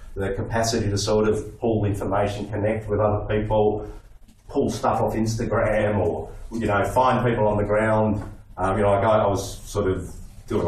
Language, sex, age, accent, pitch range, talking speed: English, male, 30-49, Australian, 100-120 Hz, 190 wpm